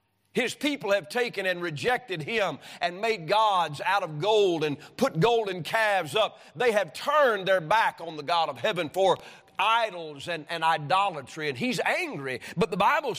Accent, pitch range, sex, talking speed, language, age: American, 175-235 Hz, male, 180 wpm, English, 50-69